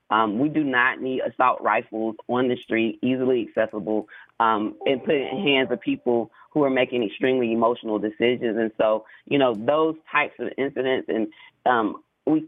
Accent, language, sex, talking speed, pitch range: American, English, female, 175 wpm, 120-150 Hz